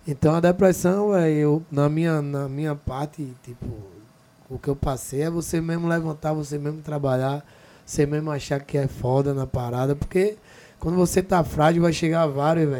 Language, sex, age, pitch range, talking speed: Portuguese, male, 20-39, 140-170 Hz, 175 wpm